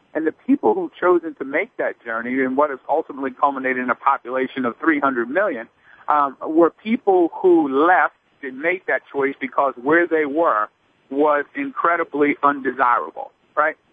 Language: English